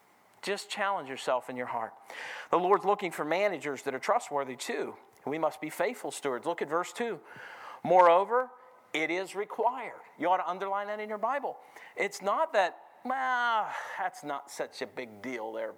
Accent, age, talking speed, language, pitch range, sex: American, 50-69, 180 wpm, English, 155-215 Hz, male